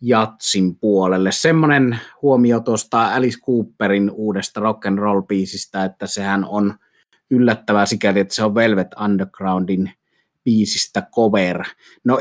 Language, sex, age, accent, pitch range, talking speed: Finnish, male, 30-49, native, 95-115 Hz, 110 wpm